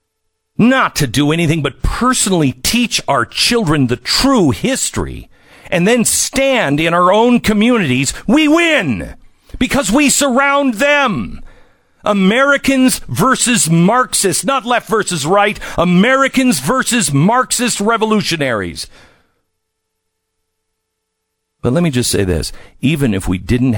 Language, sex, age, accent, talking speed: English, male, 50-69, American, 115 wpm